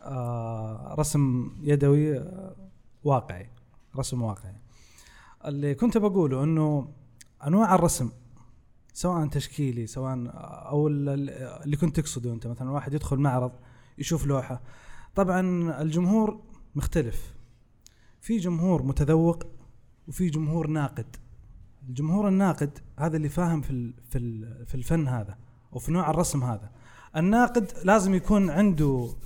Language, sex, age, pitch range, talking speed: Arabic, male, 20-39, 125-180 Hz, 110 wpm